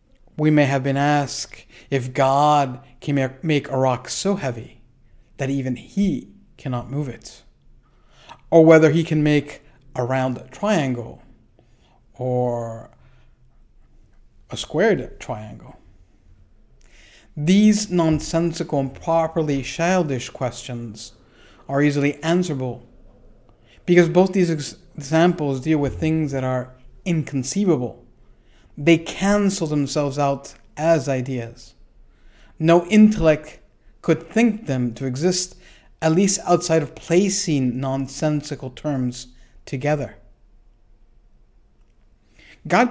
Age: 50-69